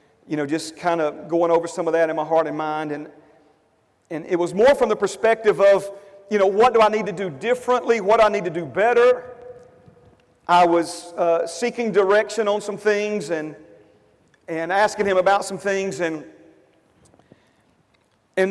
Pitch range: 175-235 Hz